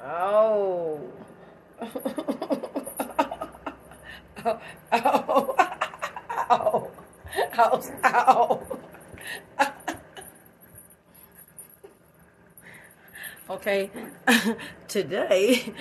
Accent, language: American, English